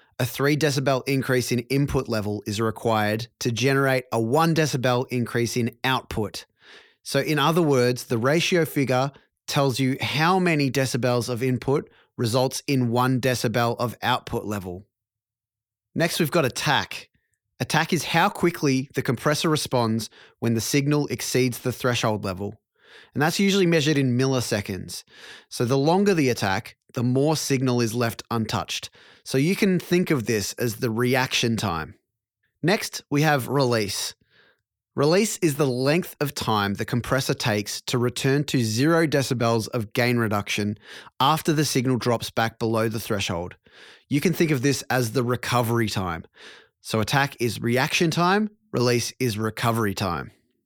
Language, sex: English, male